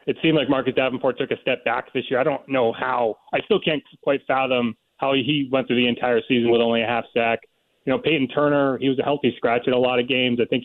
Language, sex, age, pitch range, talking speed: English, male, 30-49, 125-145 Hz, 270 wpm